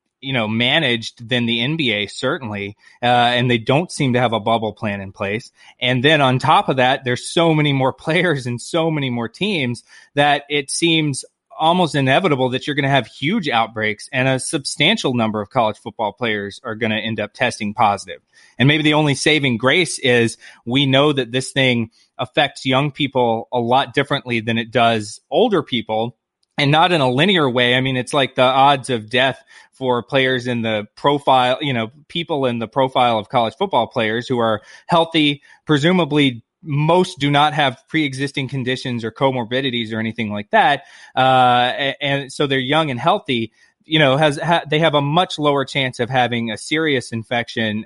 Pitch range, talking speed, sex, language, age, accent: 115-145 Hz, 190 wpm, male, English, 20-39, American